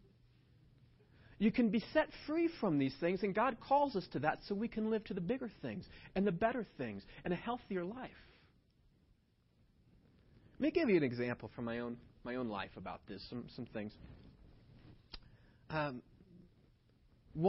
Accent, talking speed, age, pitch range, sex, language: American, 165 wpm, 30-49, 110-145 Hz, male, English